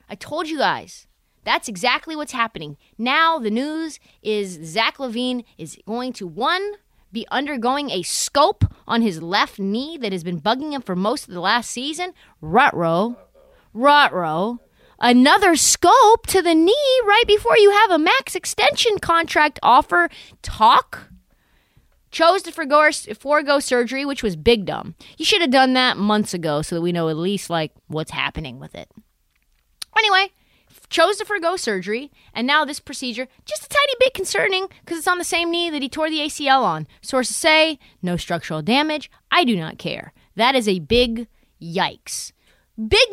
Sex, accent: female, American